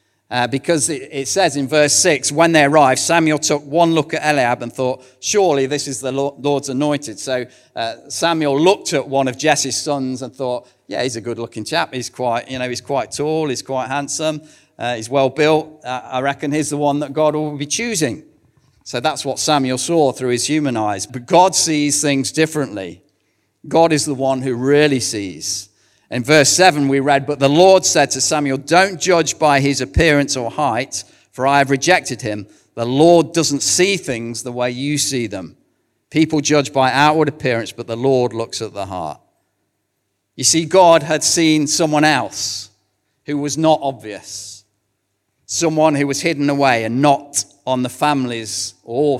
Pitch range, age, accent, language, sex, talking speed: 120-155 Hz, 50-69, British, English, male, 190 wpm